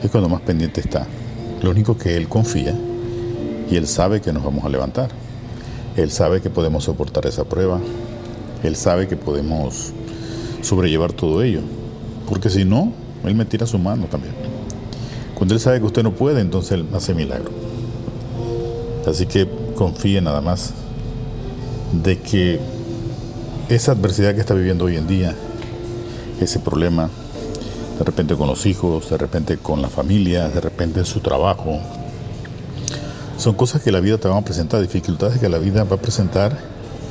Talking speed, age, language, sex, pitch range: 160 wpm, 50-69, Spanish, male, 95-120 Hz